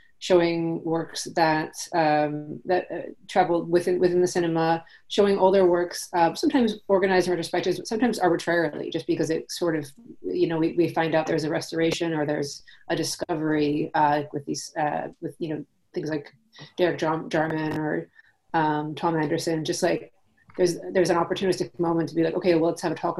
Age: 30-49